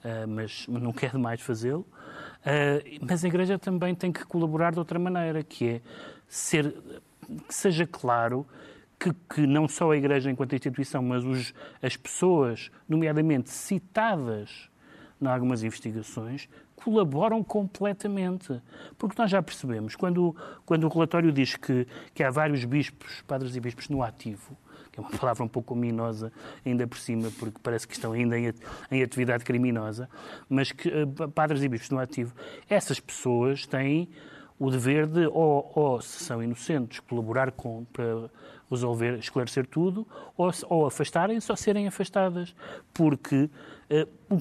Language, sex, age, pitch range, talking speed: Portuguese, male, 30-49, 125-170 Hz, 150 wpm